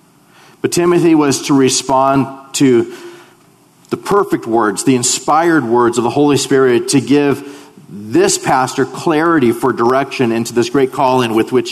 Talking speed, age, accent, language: 150 wpm, 40-59, American, English